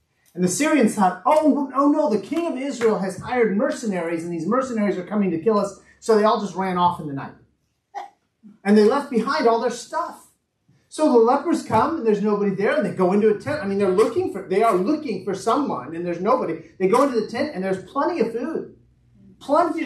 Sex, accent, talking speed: male, American, 225 wpm